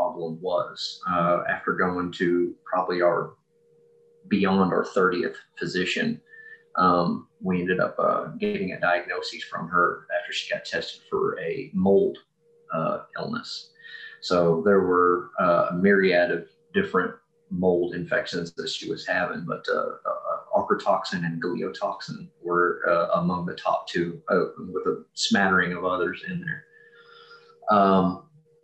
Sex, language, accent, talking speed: male, English, American, 135 wpm